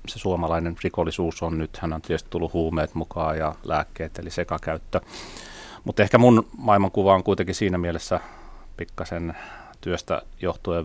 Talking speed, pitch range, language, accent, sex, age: 145 wpm, 80-85 Hz, Finnish, native, male, 30-49